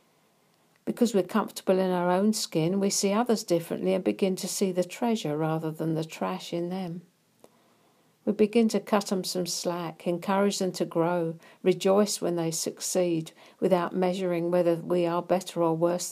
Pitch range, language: 165-200 Hz, English